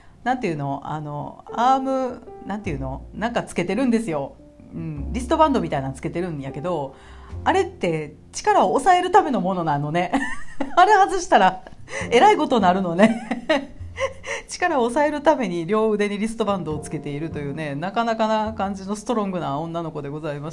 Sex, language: female, Japanese